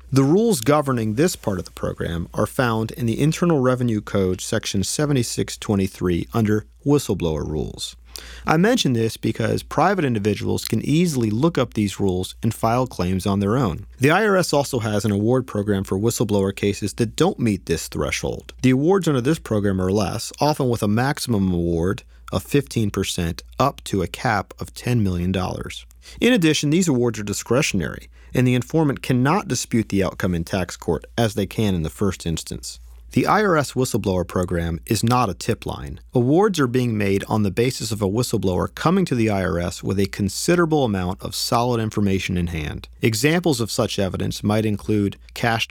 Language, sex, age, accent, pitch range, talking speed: English, male, 40-59, American, 95-125 Hz, 180 wpm